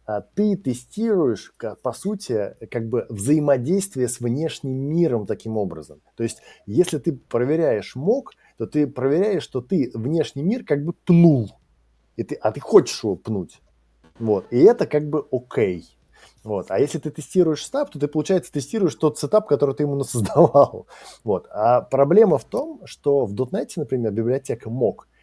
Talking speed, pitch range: 165 wpm, 110-155 Hz